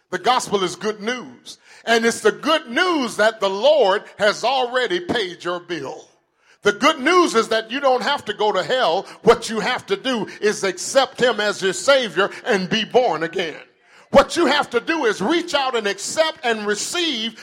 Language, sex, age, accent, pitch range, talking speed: English, male, 50-69, American, 195-275 Hz, 195 wpm